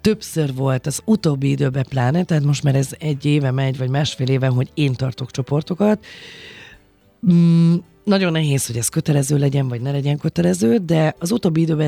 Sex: female